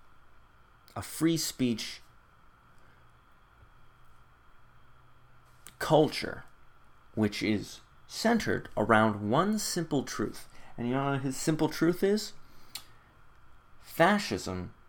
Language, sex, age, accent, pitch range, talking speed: English, male, 30-49, American, 100-145 Hz, 80 wpm